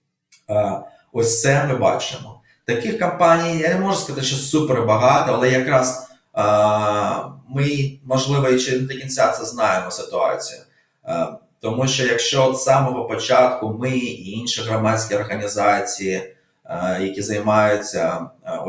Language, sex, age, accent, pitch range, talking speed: Ukrainian, male, 20-39, native, 105-130 Hz, 140 wpm